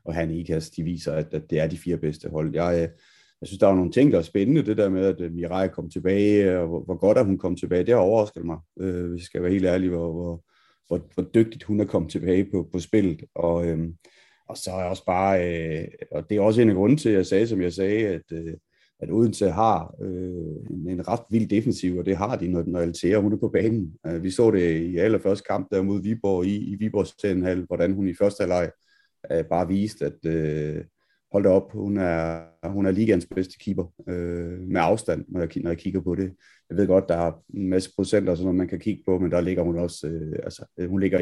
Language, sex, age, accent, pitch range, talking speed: Danish, male, 30-49, native, 85-100 Hz, 245 wpm